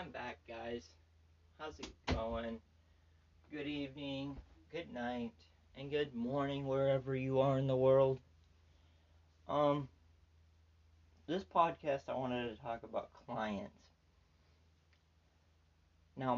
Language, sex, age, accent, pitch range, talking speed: English, male, 20-39, American, 80-120 Hz, 105 wpm